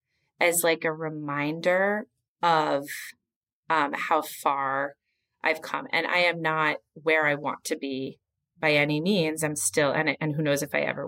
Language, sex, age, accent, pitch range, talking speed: English, female, 30-49, American, 145-200 Hz, 170 wpm